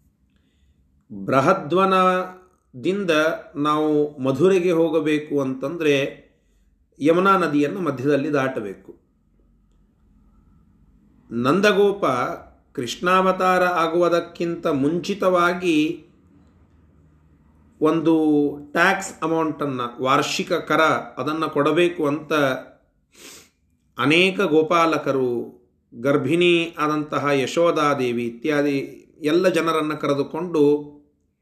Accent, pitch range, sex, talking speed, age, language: native, 135-175 Hz, male, 55 wpm, 40-59, Kannada